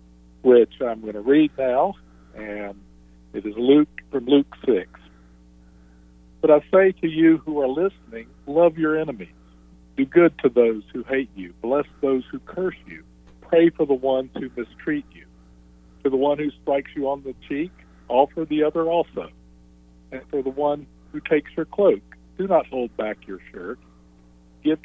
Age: 50-69